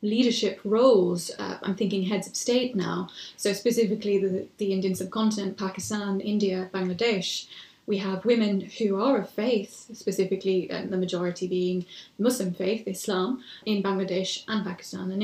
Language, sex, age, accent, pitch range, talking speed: English, female, 20-39, British, 195-230 Hz, 145 wpm